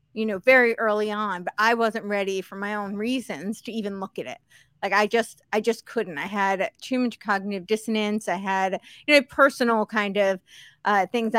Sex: female